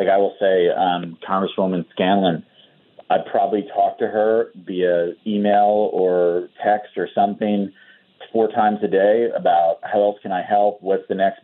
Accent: American